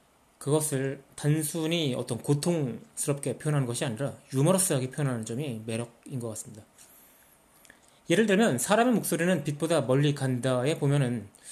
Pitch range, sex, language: 130-170 Hz, male, Korean